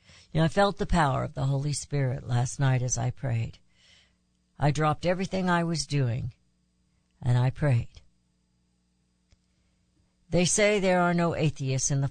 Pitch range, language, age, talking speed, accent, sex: 120-160 Hz, English, 60-79, 160 wpm, American, female